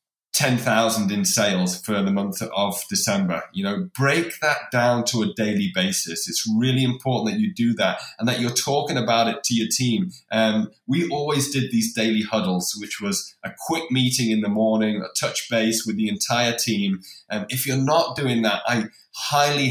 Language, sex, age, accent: English, male, 20-39, British